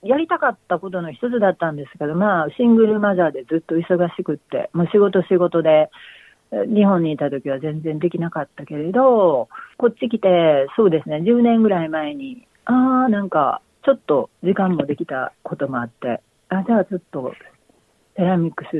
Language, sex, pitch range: Japanese, female, 160-225 Hz